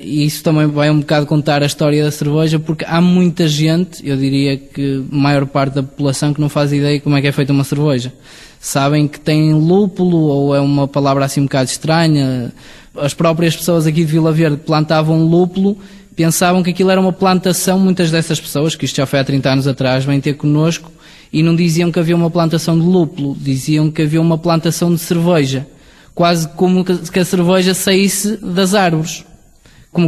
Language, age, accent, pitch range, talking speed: Portuguese, 20-39, Portuguese, 140-165 Hz, 200 wpm